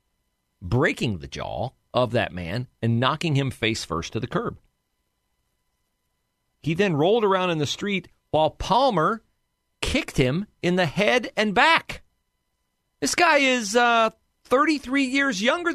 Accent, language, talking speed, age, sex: American, English, 140 wpm, 40-59, male